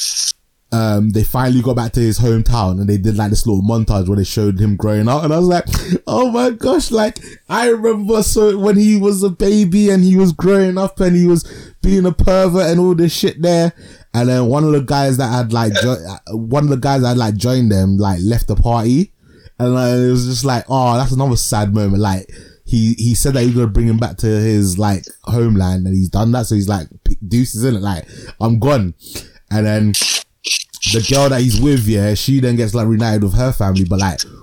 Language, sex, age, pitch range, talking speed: English, male, 20-39, 105-130 Hz, 225 wpm